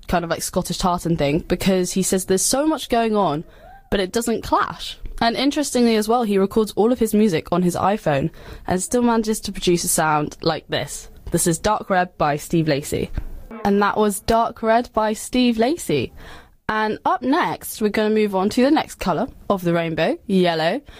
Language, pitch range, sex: English, 175-225 Hz, female